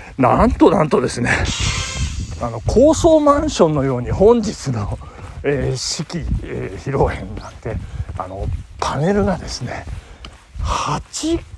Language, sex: Japanese, male